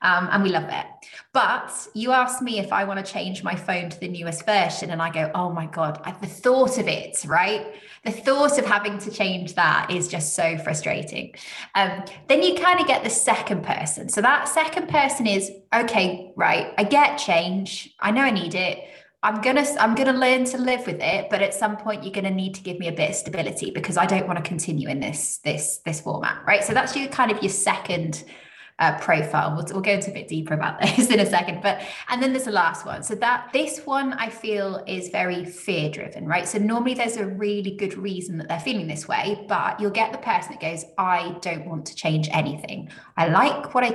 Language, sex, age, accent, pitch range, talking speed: English, female, 20-39, British, 175-235 Hz, 235 wpm